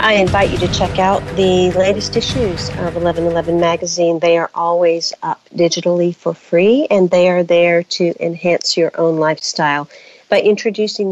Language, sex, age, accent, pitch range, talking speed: English, female, 50-69, American, 150-175 Hz, 160 wpm